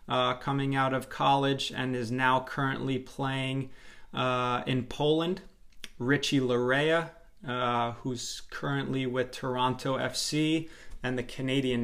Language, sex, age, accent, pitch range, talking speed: English, male, 30-49, American, 125-145 Hz, 120 wpm